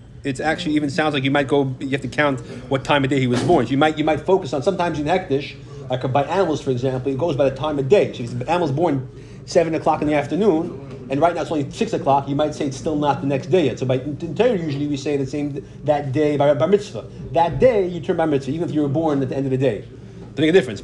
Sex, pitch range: male, 135-160 Hz